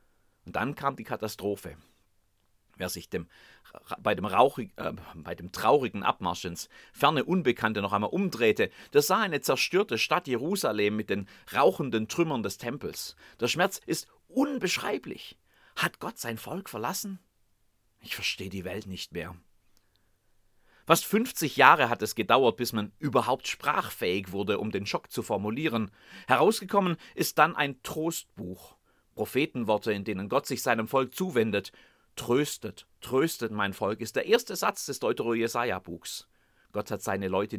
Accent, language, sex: German, German, male